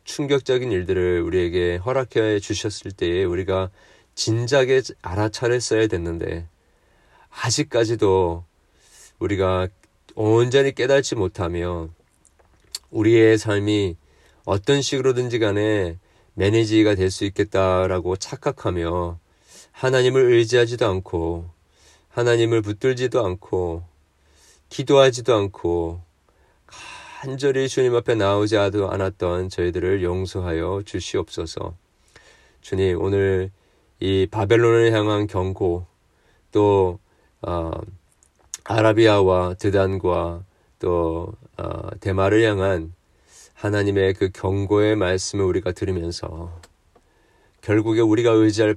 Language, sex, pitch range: Korean, male, 90-110 Hz